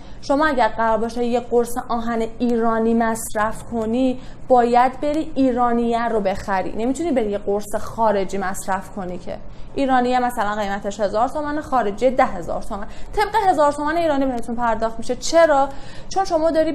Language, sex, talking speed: Persian, female, 145 wpm